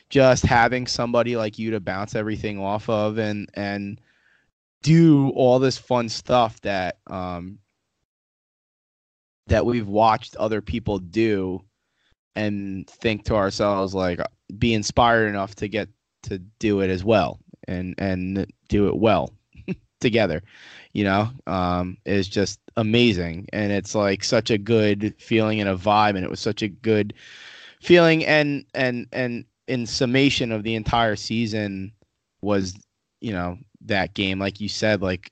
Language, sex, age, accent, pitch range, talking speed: English, male, 20-39, American, 95-115 Hz, 150 wpm